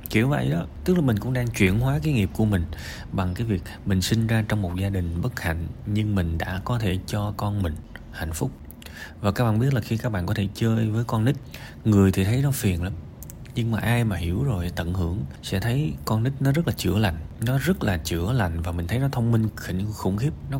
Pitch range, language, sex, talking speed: 90-120 Hz, Vietnamese, male, 255 wpm